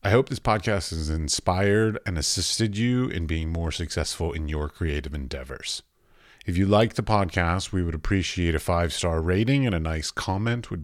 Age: 40-59